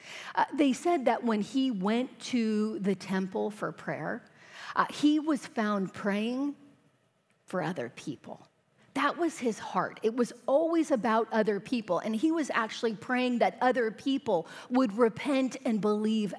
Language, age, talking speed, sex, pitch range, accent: English, 40-59, 155 wpm, female, 195-260 Hz, American